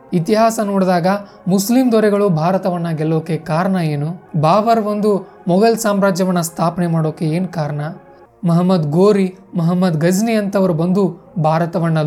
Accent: native